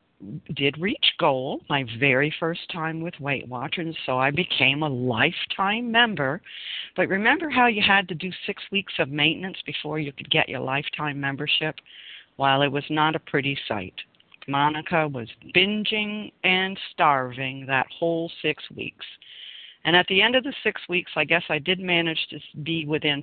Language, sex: English, female